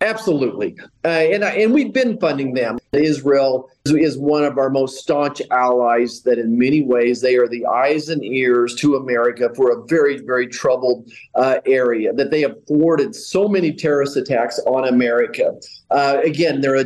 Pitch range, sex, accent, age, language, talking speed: 140-190 Hz, male, American, 40-59, English, 180 wpm